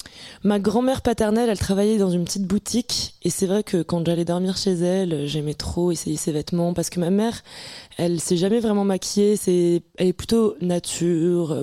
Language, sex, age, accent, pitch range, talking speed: French, female, 20-39, French, 170-205 Hz, 195 wpm